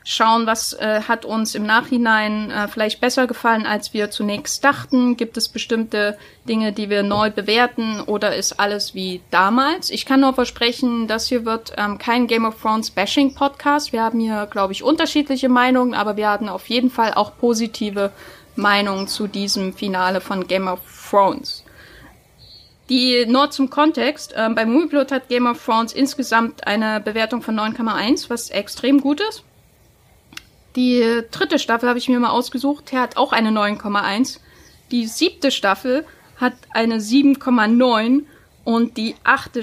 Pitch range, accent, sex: 205-250 Hz, German, female